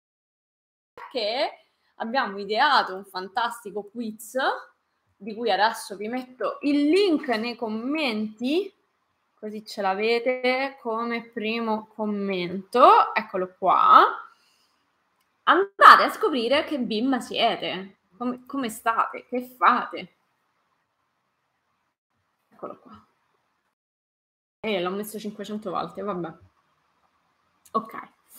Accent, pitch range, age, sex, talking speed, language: native, 210-305 Hz, 20-39, female, 95 wpm, Italian